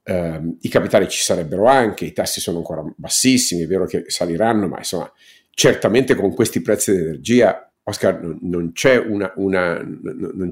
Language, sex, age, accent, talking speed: Italian, male, 50-69, native, 160 wpm